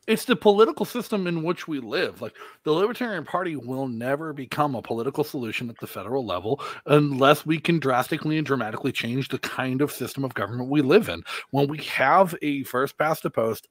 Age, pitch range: 40-59, 125-165 Hz